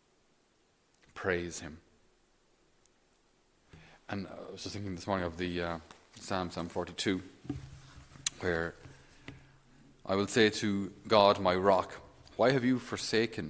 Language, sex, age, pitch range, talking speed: English, male, 40-59, 90-110 Hz, 120 wpm